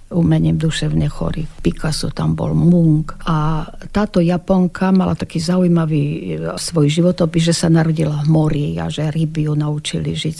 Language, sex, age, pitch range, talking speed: Slovak, female, 50-69, 150-170 Hz, 145 wpm